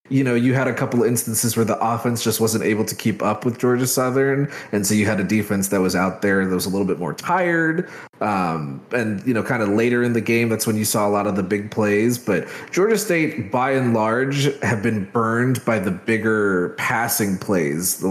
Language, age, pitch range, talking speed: English, 30-49, 105-130 Hz, 240 wpm